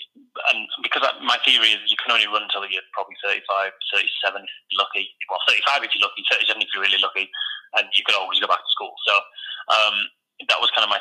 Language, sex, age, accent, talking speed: English, male, 20-39, British, 255 wpm